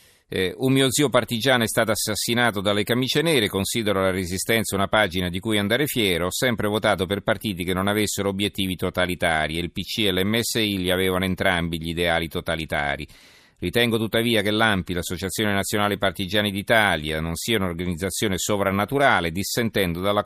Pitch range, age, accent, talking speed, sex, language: 90-110 Hz, 40-59, native, 160 wpm, male, Italian